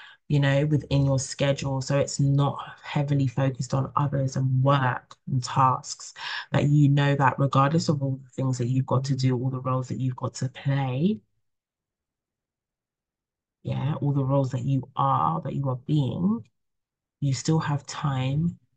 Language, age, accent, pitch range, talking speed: English, 20-39, British, 125-140 Hz, 170 wpm